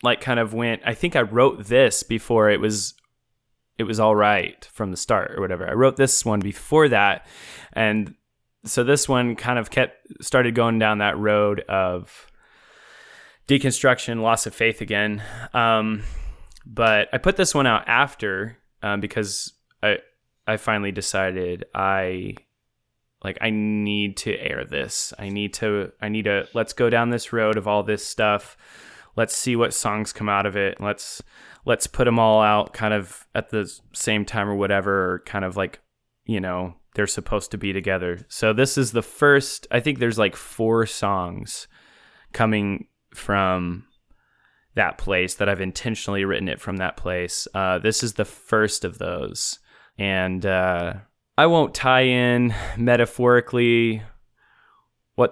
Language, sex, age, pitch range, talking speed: English, male, 20-39, 100-120 Hz, 165 wpm